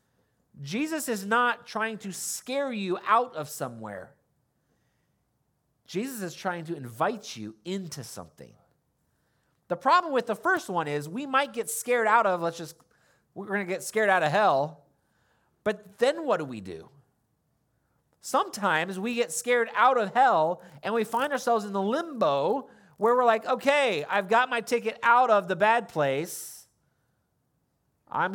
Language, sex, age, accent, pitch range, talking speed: English, male, 30-49, American, 125-205 Hz, 160 wpm